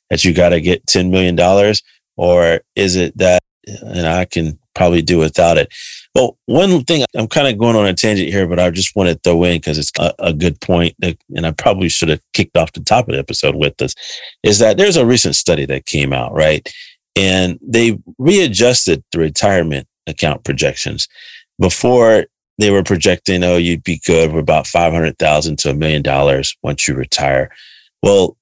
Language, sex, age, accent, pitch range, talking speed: English, male, 30-49, American, 80-95 Hz, 195 wpm